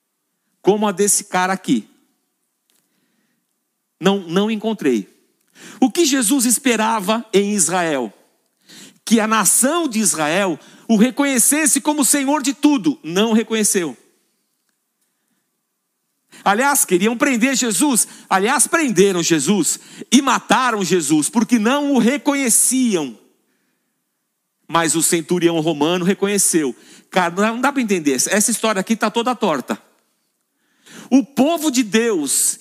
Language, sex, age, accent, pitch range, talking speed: Portuguese, male, 50-69, Brazilian, 190-270 Hz, 115 wpm